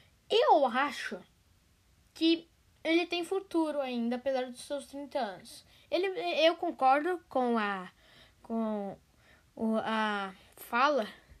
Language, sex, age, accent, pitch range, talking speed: Portuguese, female, 10-29, Brazilian, 245-340 Hz, 105 wpm